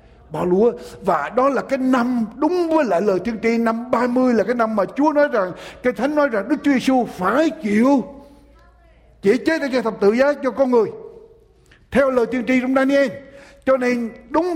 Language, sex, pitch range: Japanese, male, 220-280 Hz